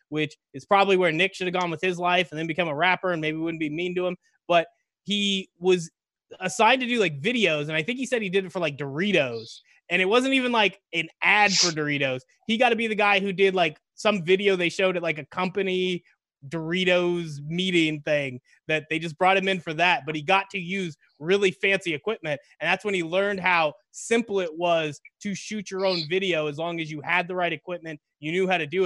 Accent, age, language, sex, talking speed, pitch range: American, 20-39, English, male, 235 wpm, 160-195 Hz